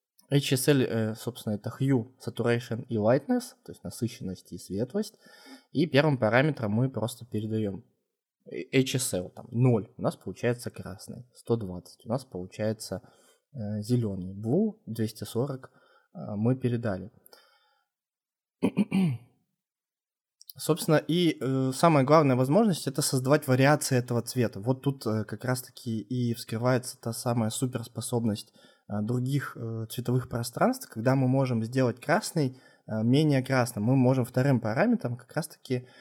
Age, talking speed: 20-39, 125 wpm